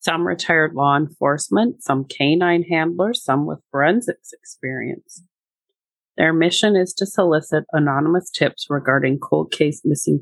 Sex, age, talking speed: female, 30-49, 130 wpm